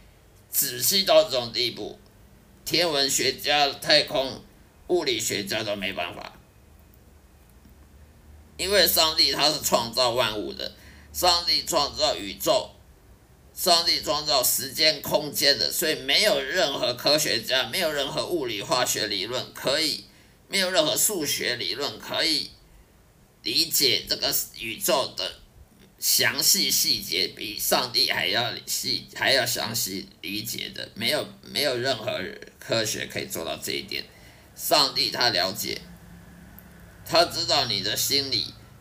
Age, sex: 50-69, male